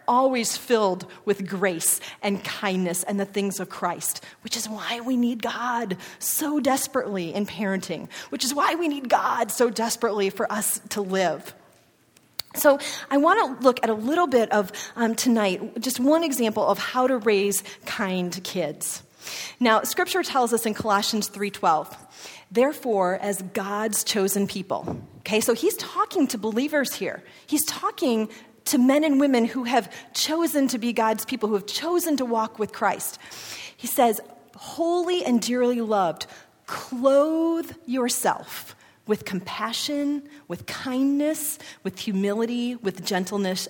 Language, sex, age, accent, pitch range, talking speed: English, female, 30-49, American, 200-265 Hz, 150 wpm